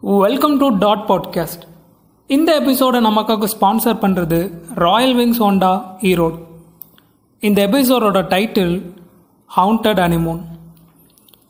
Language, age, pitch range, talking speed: Tamil, 30-49, 175-225 Hz, 95 wpm